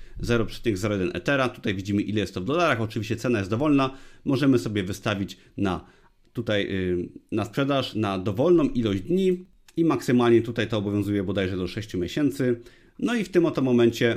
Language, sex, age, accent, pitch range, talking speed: Polish, male, 30-49, native, 110-135 Hz, 165 wpm